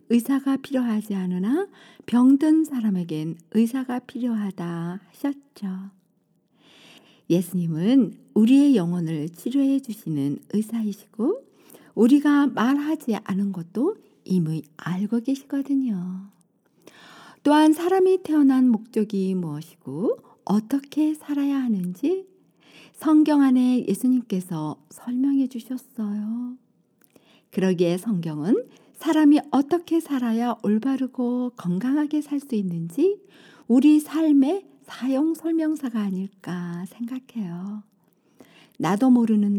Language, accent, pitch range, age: Korean, native, 190-280 Hz, 50-69